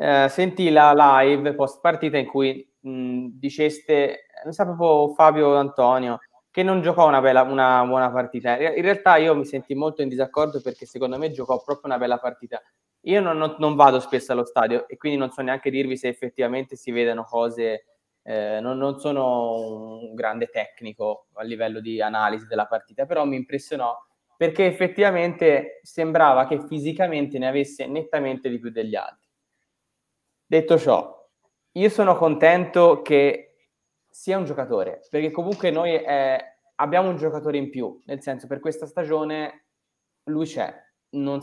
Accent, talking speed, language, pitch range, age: native, 160 wpm, Italian, 125-155 Hz, 20-39